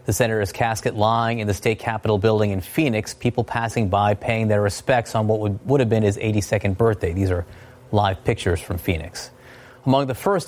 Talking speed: 200 wpm